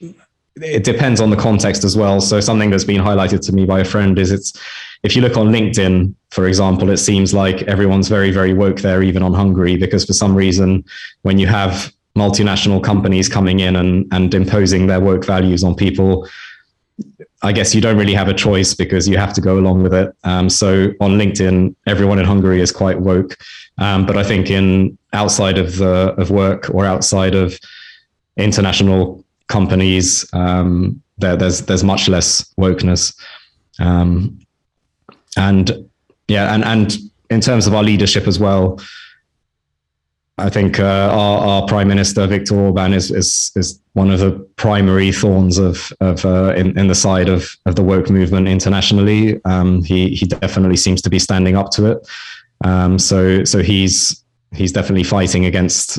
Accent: British